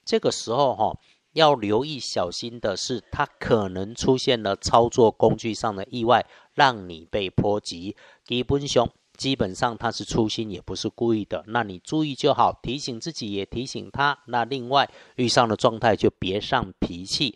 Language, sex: Chinese, male